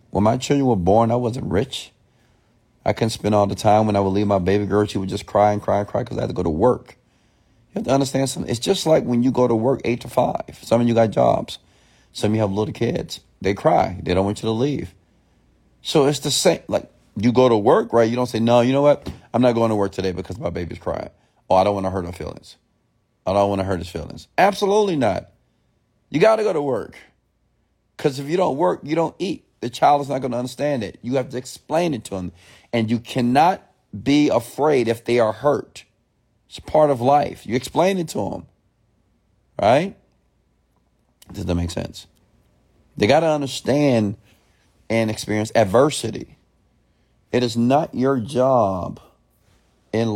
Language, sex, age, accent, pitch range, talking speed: English, male, 30-49, American, 100-130 Hz, 215 wpm